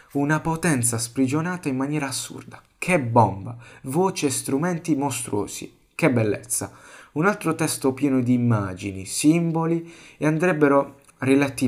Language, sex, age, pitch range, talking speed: Italian, male, 30-49, 120-155 Hz, 125 wpm